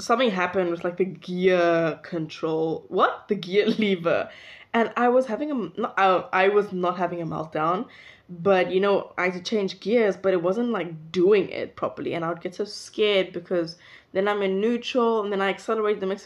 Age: 10-29